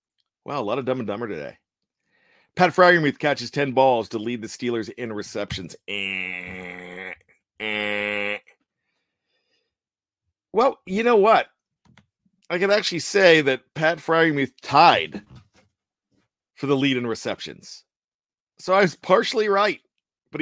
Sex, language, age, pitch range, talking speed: male, English, 40-59, 110-145 Hz, 130 wpm